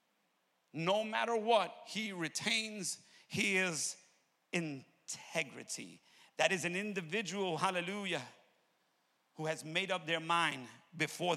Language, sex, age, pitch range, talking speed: English, male, 50-69, 170-225 Hz, 100 wpm